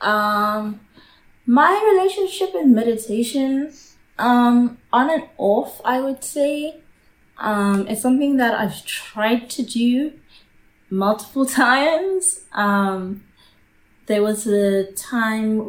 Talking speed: 105 wpm